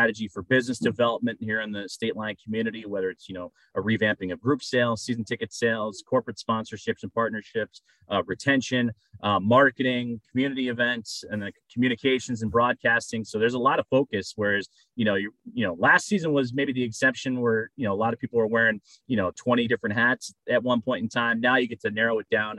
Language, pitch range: English, 105-125 Hz